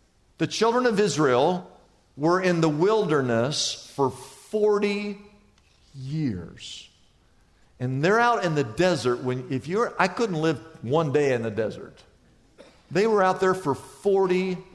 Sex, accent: male, American